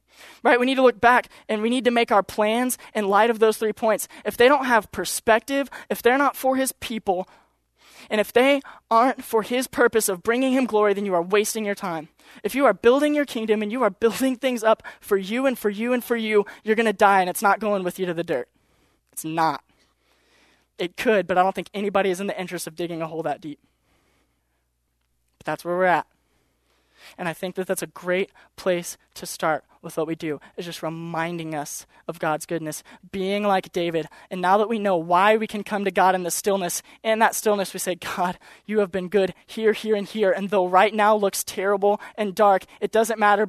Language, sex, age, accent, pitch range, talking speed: English, male, 20-39, American, 180-230 Hz, 230 wpm